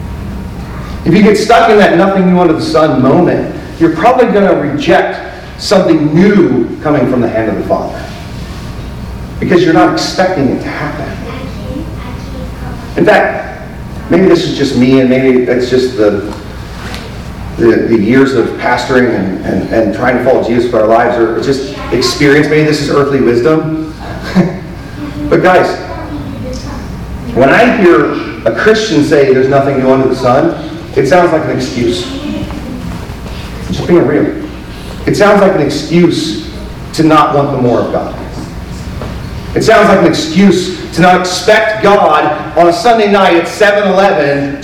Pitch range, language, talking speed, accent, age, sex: 130-195 Hz, English, 155 wpm, American, 40-59, male